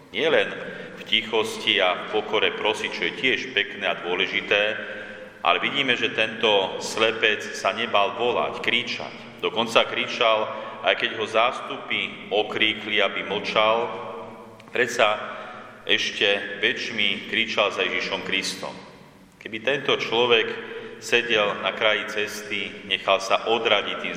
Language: Slovak